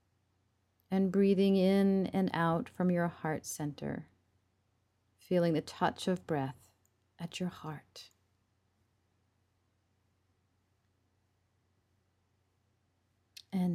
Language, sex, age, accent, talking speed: English, female, 40-59, American, 80 wpm